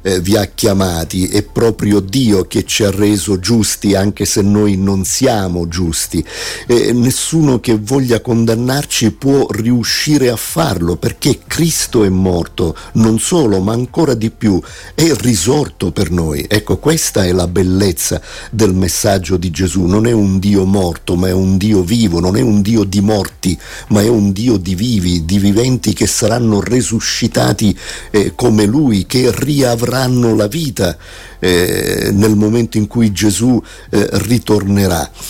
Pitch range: 95-115 Hz